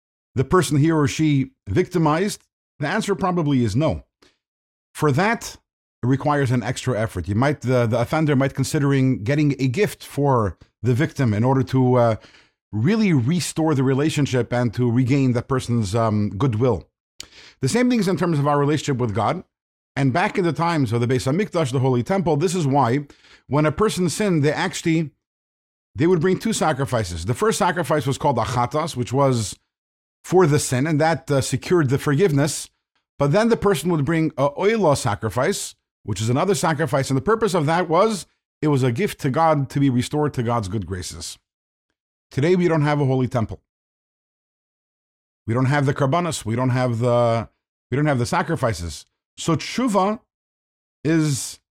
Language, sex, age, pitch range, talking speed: English, male, 50-69, 120-160 Hz, 180 wpm